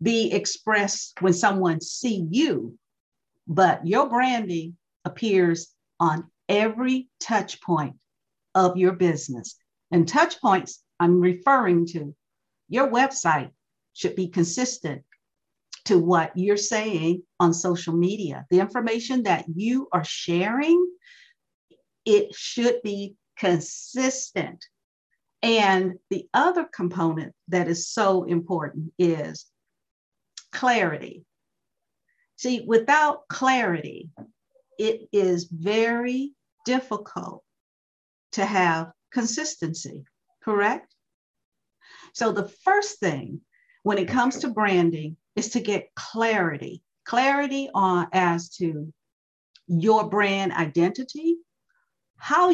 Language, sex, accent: English, female, American